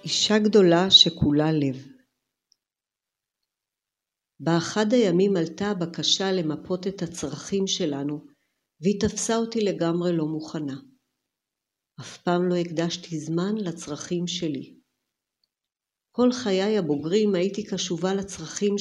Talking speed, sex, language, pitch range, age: 100 wpm, female, Hebrew, 155-200 Hz, 50-69